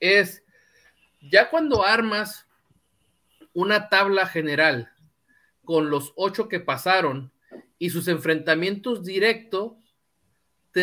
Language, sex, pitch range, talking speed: Spanish, male, 155-215 Hz, 95 wpm